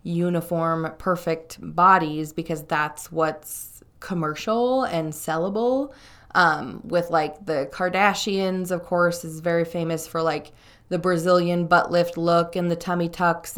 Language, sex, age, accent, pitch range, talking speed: English, female, 20-39, American, 165-195 Hz, 135 wpm